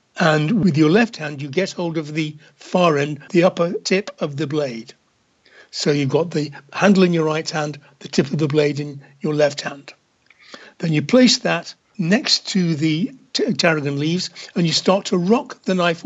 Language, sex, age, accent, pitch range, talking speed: English, male, 60-79, British, 150-195 Hz, 195 wpm